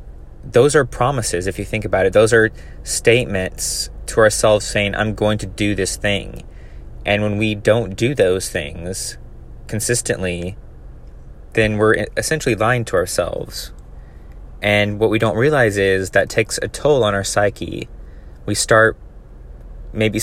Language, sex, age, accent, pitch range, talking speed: English, male, 20-39, American, 85-110 Hz, 150 wpm